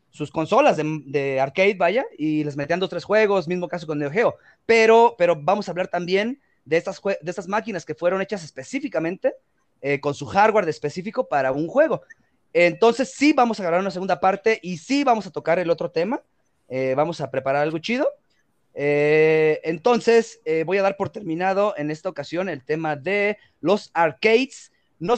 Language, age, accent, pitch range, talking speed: Spanish, 30-49, Mexican, 150-225 Hz, 190 wpm